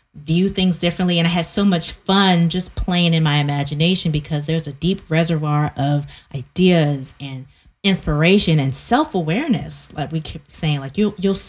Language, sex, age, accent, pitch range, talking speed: English, female, 20-39, American, 150-180 Hz, 160 wpm